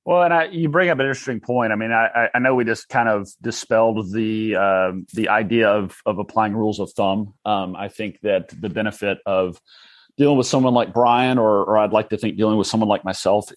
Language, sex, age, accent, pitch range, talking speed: English, male, 30-49, American, 100-120 Hz, 230 wpm